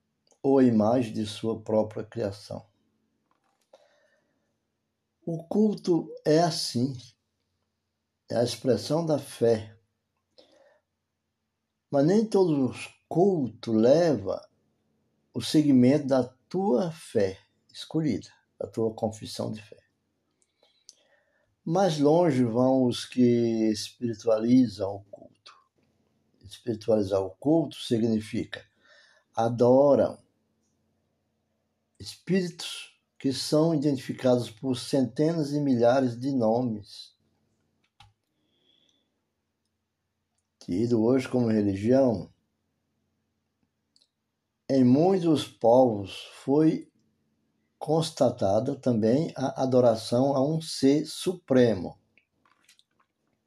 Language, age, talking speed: Portuguese, 60-79, 80 wpm